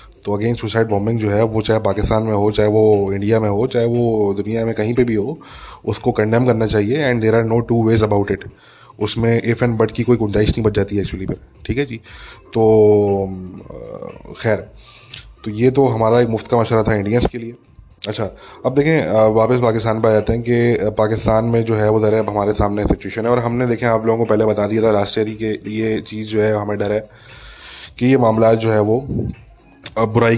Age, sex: 20-39, male